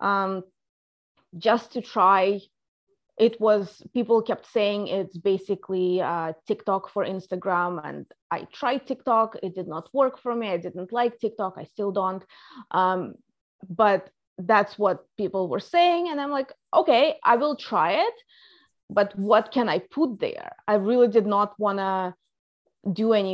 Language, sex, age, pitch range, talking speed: Dutch, female, 20-39, 195-250 Hz, 155 wpm